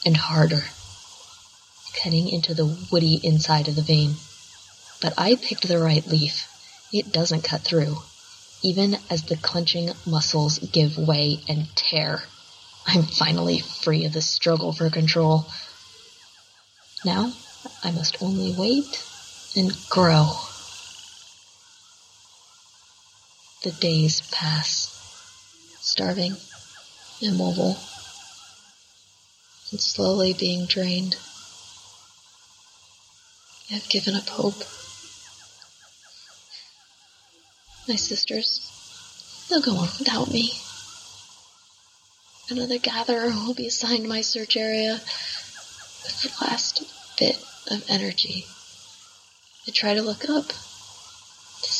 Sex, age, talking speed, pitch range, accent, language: female, 30-49, 95 wpm, 160-250 Hz, American, English